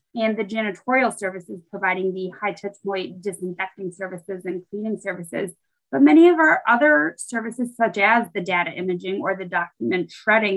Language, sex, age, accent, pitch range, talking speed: English, female, 20-39, American, 190-240 Hz, 165 wpm